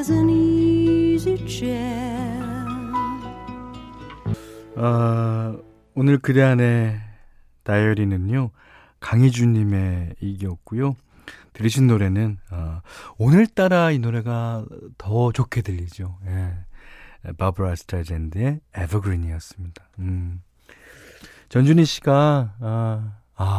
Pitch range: 95-130 Hz